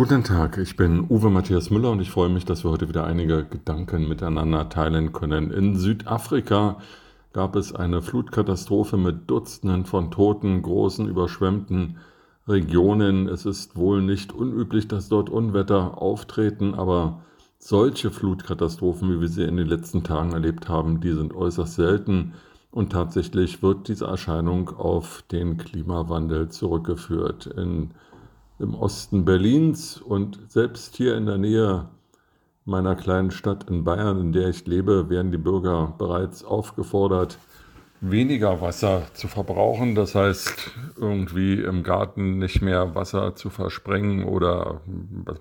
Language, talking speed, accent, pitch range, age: German, 140 wpm, German, 85-100 Hz, 50-69